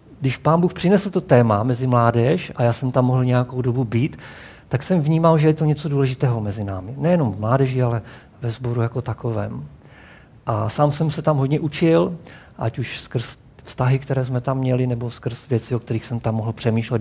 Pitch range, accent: 115-140 Hz, native